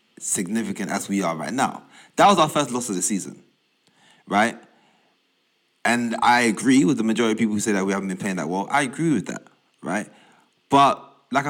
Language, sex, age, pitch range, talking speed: English, male, 30-49, 100-170 Hz, 205 wpm